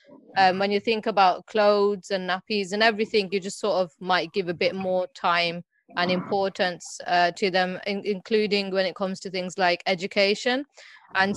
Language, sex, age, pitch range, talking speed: English, female, 20-39, 190-225 Hz, 180 wpm